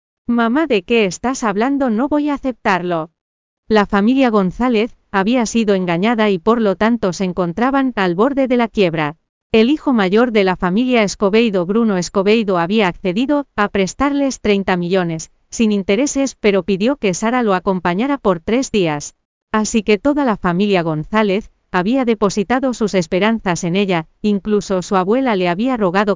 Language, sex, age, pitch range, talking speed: Spanish, female, 40-59, 185-235 Hz, 160 wpm